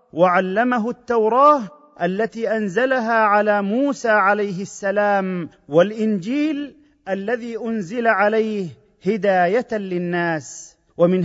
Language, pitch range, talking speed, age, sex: Arabic, 200-250 Hz, 80 wpm, 40-59, male